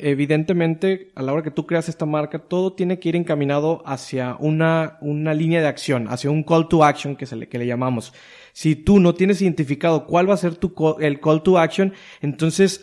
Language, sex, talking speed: Spanish, male, 220 wpm